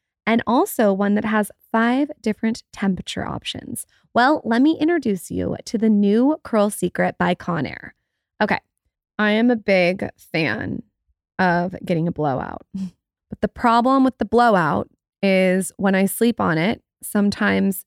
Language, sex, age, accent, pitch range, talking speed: English, female, 20-39, American, 190-235 Hz, 150 wpm